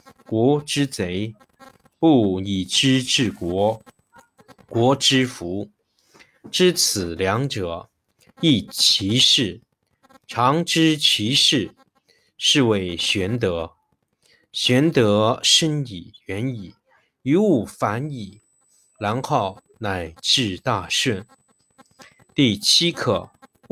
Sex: male